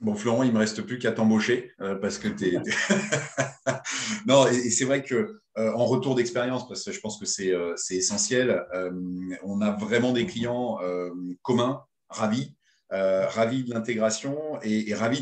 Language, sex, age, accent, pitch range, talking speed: French, male, 30-49, French, 105-130 Hz, 185 wpm